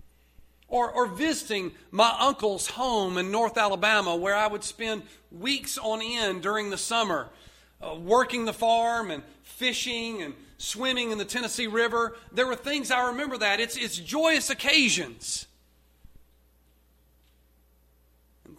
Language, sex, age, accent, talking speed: English, male, 40-59, American, 135 wpm